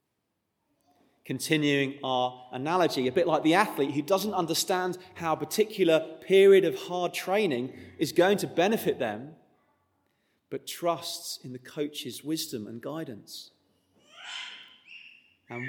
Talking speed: 120 wpm